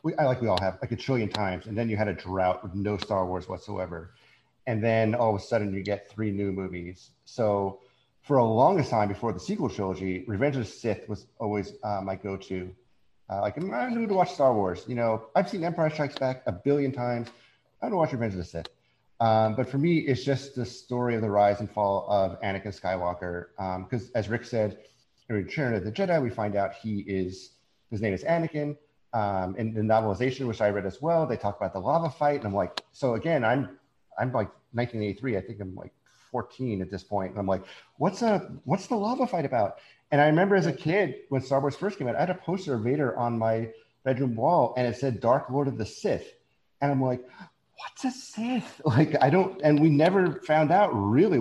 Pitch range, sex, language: 100-140 Hz, male, English